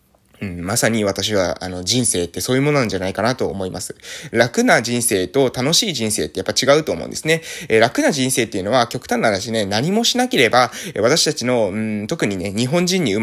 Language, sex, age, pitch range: Japanese, male, 20-39, 110-170 Hz